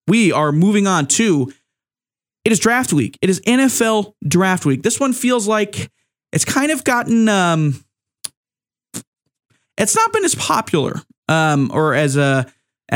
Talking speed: 155 wpm